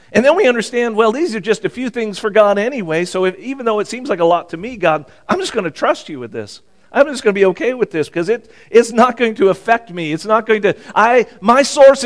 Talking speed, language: 285 wpm, English